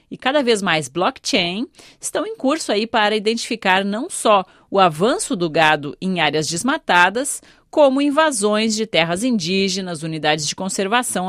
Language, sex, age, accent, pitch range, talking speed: Portuguese, female, 40-59, Brazilian, 185-260 Hz, 145 wpm